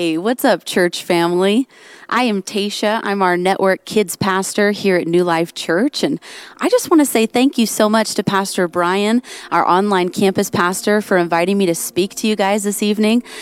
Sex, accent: female, American